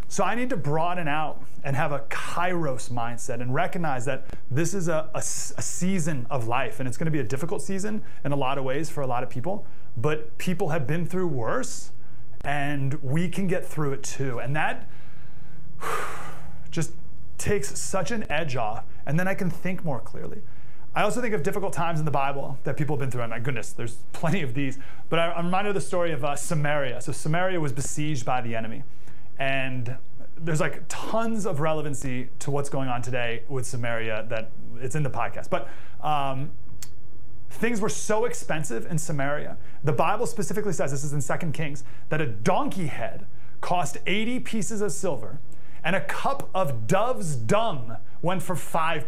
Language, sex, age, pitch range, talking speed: English, male, 30-49, 130-180 Hz, 190 wpm